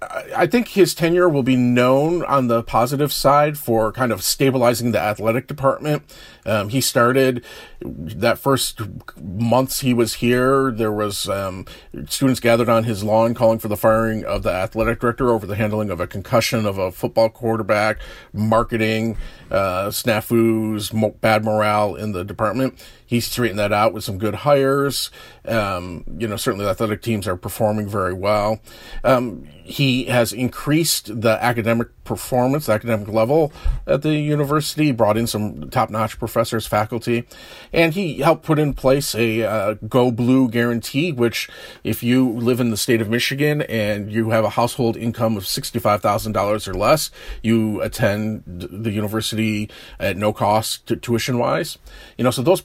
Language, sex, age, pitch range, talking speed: English, male, 40-59, 110-130 Hz, 165 wpm